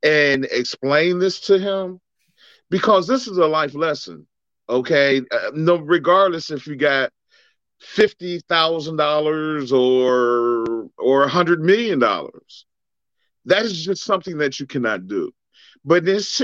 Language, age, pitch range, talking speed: English, 40-59, 145-220 Hz, 135 wpm